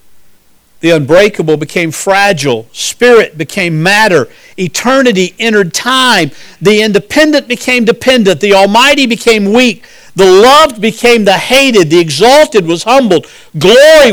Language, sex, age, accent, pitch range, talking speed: English, male, 50-69, American, 150-240 Hz, 120 wpm